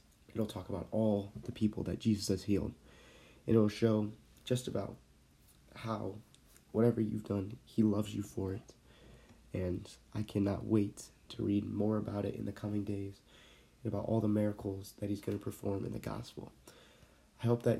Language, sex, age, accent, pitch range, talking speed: English, male, 30-49, American, 100-110 Hz, 180 wpm